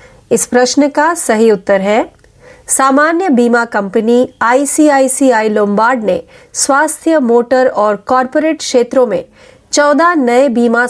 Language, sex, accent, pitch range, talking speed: Marathi, female, native, 230-290 Hz, 115 wpm